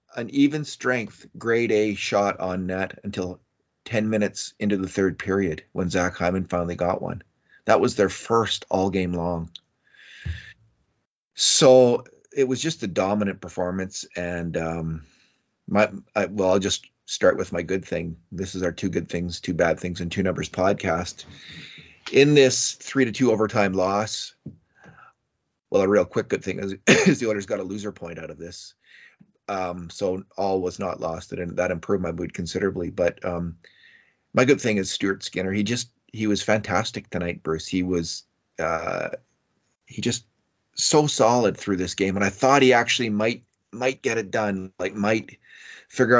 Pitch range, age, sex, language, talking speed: 90-115 Hz, 30-49, male, English, 175 wpm